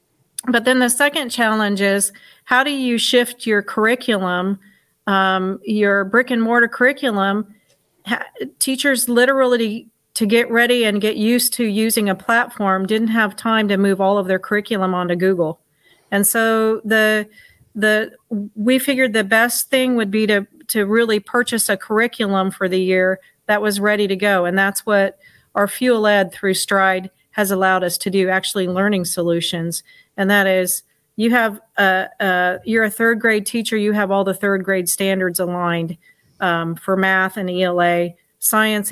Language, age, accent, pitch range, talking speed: English, 40-59, American, 190-230 Hz, 165 wpm